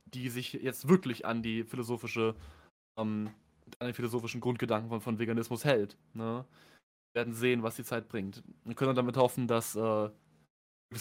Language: German